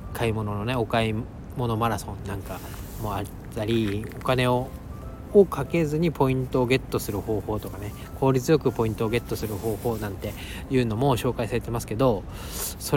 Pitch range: 105-135 Hz